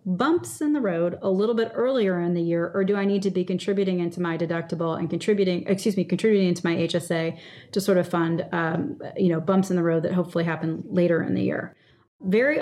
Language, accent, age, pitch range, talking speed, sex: English, American, 30-49, 175-215 Hz, 230 wpm, female